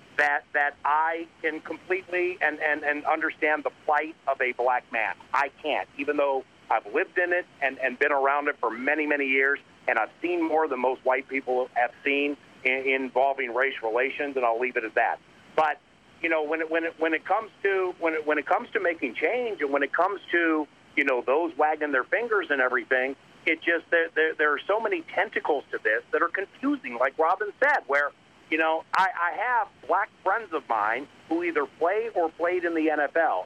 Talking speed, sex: 215 wpm, male